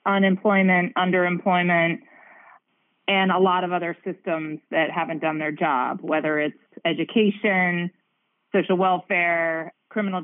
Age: 30-49